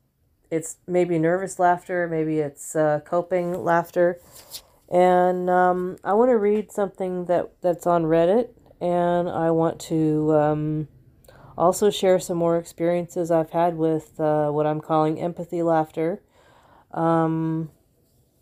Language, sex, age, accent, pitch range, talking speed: English, female, 40-59, American, 155-180 Hz, 130 wpm